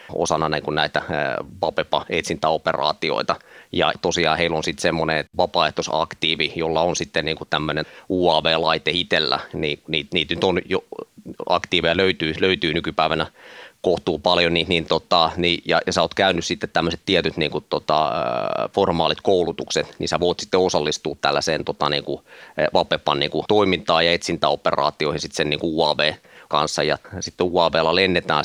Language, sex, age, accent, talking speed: Finnish, male, 30-49, native, 110 wpm